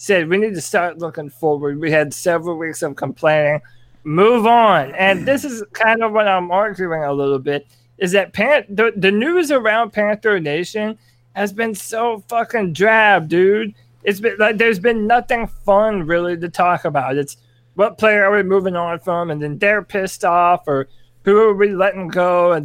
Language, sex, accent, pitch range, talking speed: English, male, American, 155-215 Hz, 190 wpm